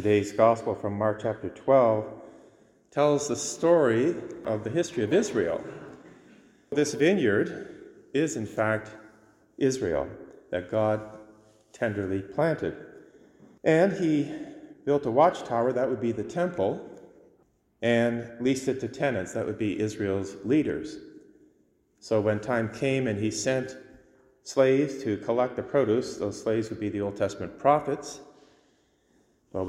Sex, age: male, 30-49